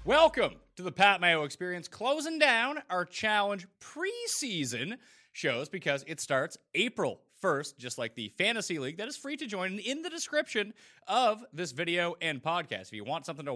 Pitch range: 155-230 Hz